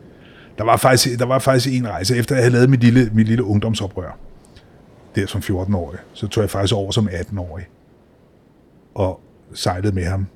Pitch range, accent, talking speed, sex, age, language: 95-110 Hz, native, 185 wpm, male, 30-49, Danish